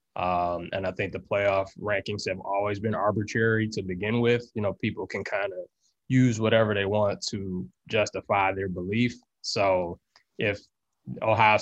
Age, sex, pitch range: 20-39, male, 95-110 Hz